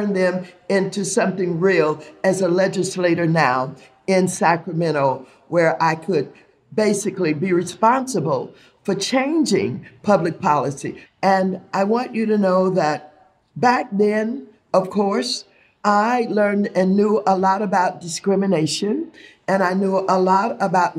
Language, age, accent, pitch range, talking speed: English, 50-69, American, 180-215 Hz, 130 wpm